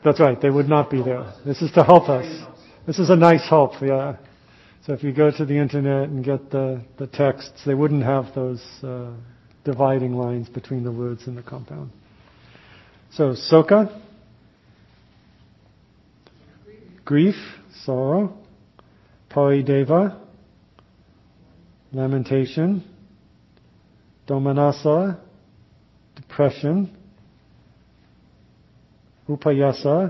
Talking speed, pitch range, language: 105 wpm, 120-160 Hz, English